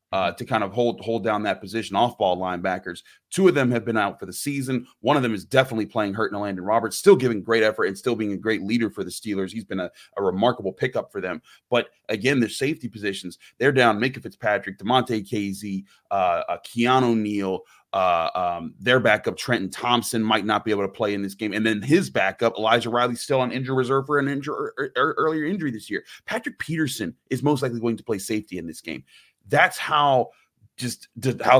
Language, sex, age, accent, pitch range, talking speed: English, male, 30-49, American, 105-135 Hz, 220 wpm